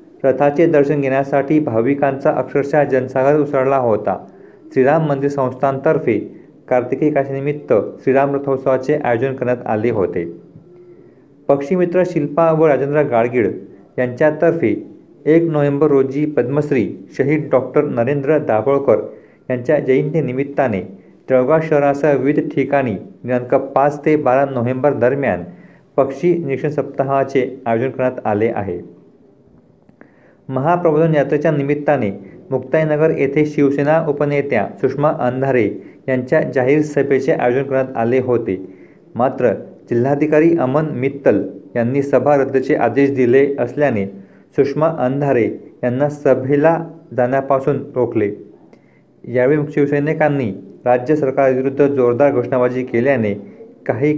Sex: male